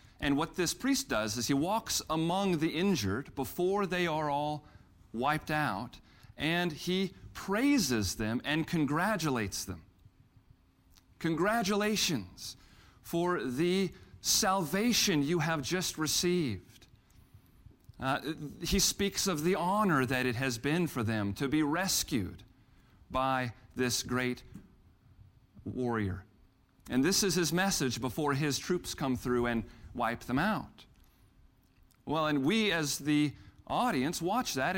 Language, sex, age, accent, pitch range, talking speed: English, male, 40-59, American, 115-180 Hz, 125 wpm